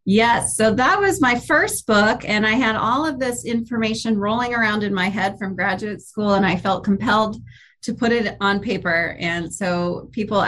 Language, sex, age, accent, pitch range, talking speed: English, female, 30-49, American, 175-225 Hz, 195 wpm